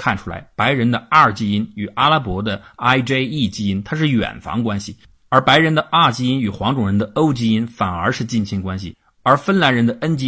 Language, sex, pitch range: Chinese, male, 100-130 Hz